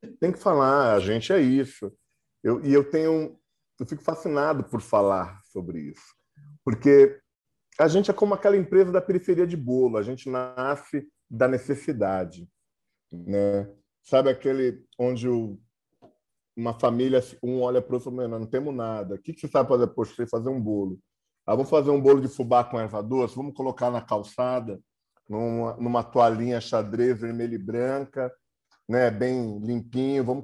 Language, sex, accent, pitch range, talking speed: Portuguese, male, Brazilian, 115-145 Hz, 170 wpm